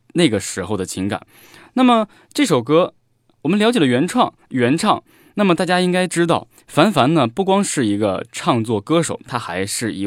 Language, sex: Chinese, male